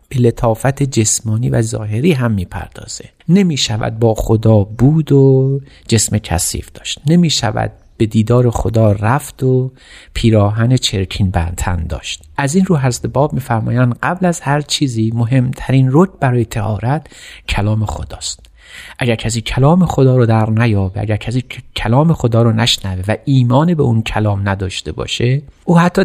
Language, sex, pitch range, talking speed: Persian, male, 100-130 Hz, 145 wpm